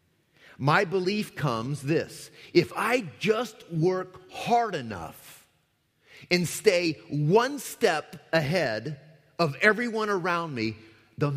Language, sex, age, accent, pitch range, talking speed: English, male, 30-49, American, 135-200 Hz, 105 wpm